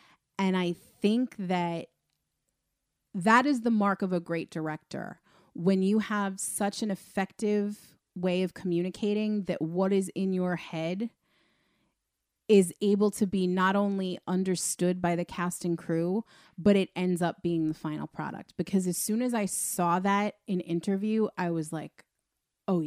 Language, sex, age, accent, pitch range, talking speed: English, female, 30-49, American, 170-200 Hz, 155 wpm